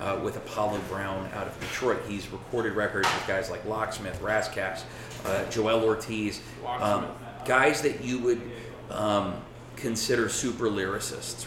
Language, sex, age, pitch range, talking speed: English, male, 30-49, 100-120 Hz, 140 wpm